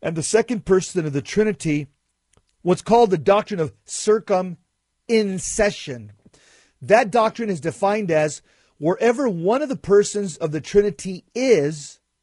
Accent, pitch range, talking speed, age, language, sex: American, 155-205 Hz, 130 wpm, 40-59, English, male